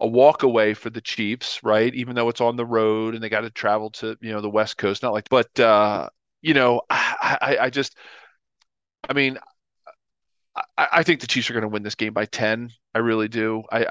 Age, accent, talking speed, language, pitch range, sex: 40-59, American, 230 wpm, English, 105-115 Hz, male